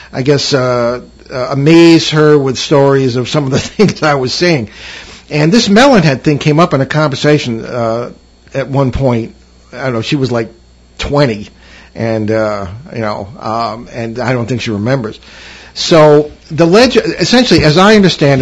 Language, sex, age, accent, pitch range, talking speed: English, male, 50-69, American, 120-150 Hz, 175 wpm